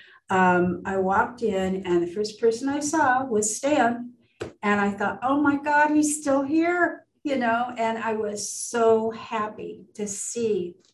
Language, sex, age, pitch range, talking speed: English, female, 50-69, 190-230 Hz, 165 wpm